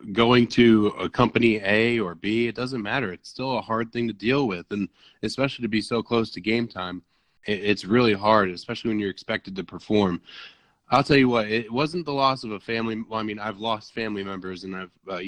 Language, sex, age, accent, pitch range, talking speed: English, male, 20-39, American, 105-125 Hz, 225 wpm